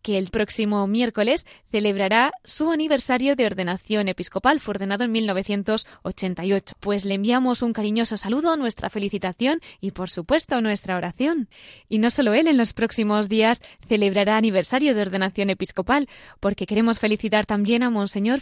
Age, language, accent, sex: 20-39, Spanish, Spanish, female